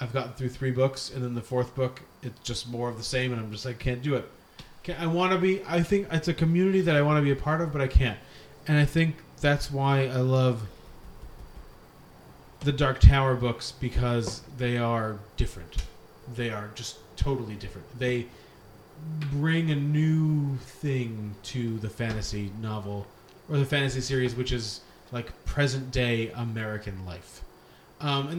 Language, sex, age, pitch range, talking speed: English, male, 30-49, 120-145 Hz, 180 wpm